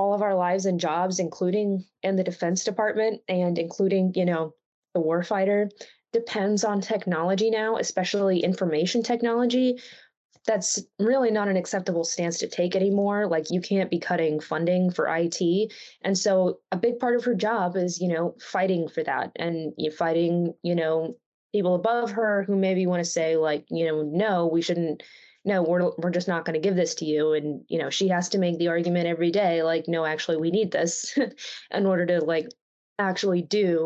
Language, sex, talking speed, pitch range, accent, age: English, female, 190 wpm, 170-210 Hz, American, 20-39